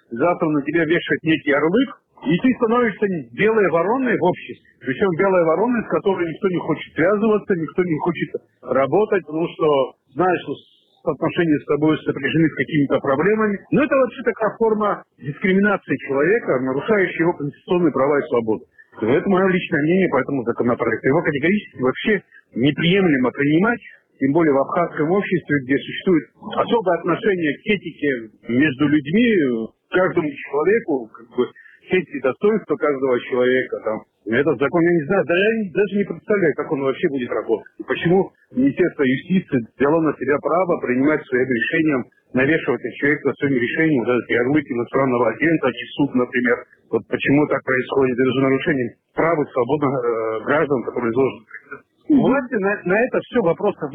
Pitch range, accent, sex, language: 140-205 Hz, native, male, Russian